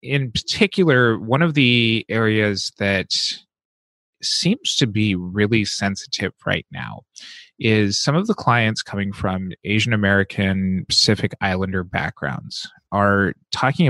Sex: male